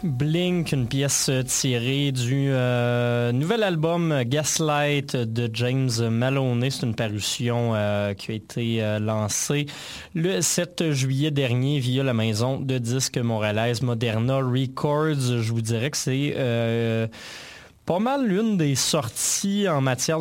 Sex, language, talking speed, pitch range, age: male, French, 135 wpm, 120-150 Hz, 20-39